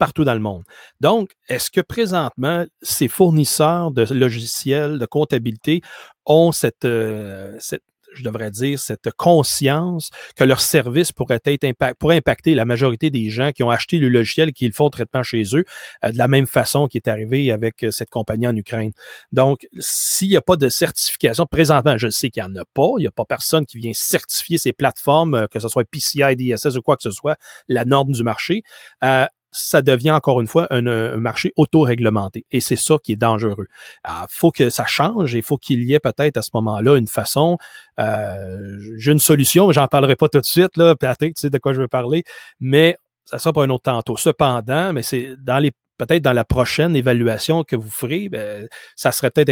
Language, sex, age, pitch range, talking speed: French, male, 40-59, 115-150 Hz, 215 wpm